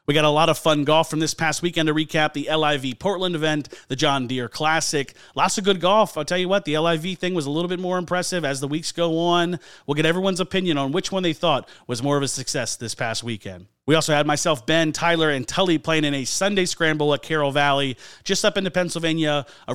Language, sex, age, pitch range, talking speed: English, male, 30-49, 140-170 Hz, 245 wpm